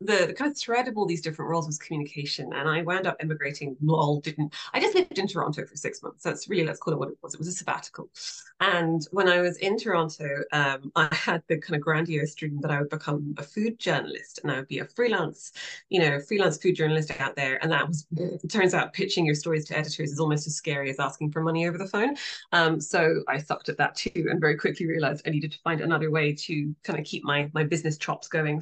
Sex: female